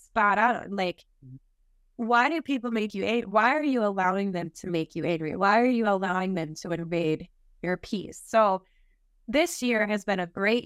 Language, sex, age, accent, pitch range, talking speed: English, female, 20-39, American, 180-235 Hz, 185 wpm